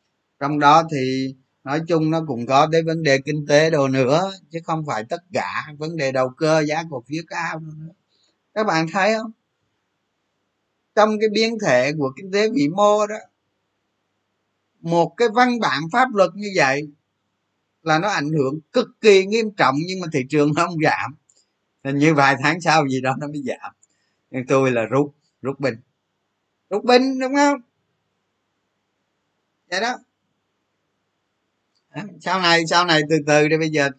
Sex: male